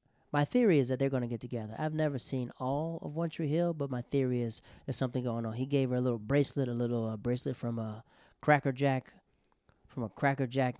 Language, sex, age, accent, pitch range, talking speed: English, male, 30-49, American, 115-135 Hz, 235 wpm